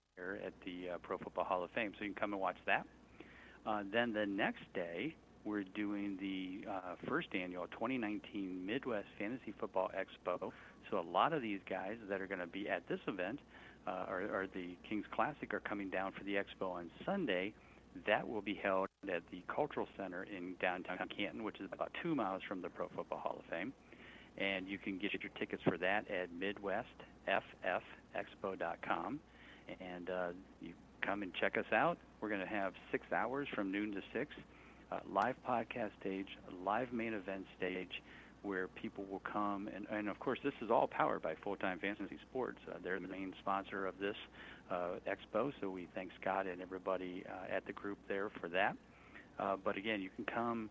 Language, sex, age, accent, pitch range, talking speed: English, male, 50-69, American, 95-105 Hz, 190 wpm